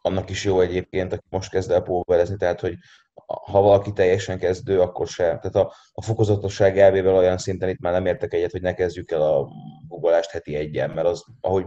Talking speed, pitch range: 205 wpm, 95-115 Hz